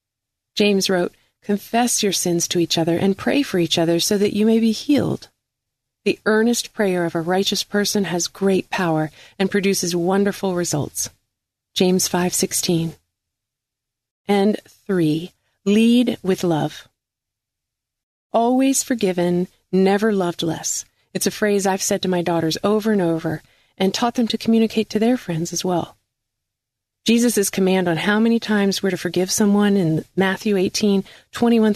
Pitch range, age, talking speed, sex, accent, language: 165-210 Hz, 40-59, 150 wpm, female, American, English